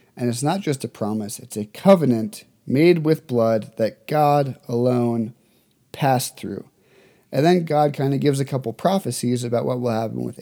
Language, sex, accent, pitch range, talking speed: English, male, American, 120-150 Hz, 180 wpm